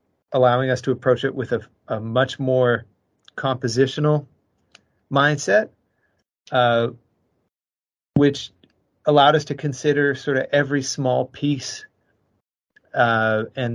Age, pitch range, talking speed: 30-49, 115-130 Hz, 110 wpm